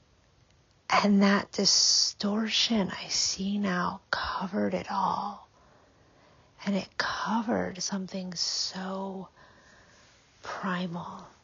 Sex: female